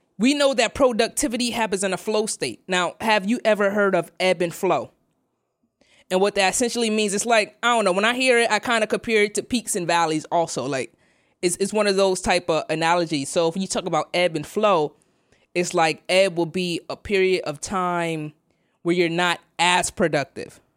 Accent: American